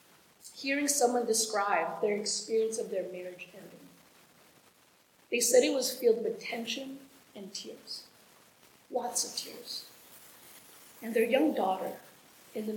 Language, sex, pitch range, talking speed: English, female, 210-260 Hz, 125 wpm